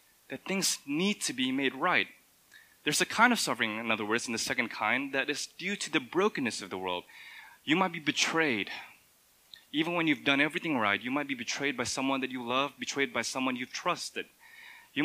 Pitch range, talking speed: 115-175 Hz, 210 wpm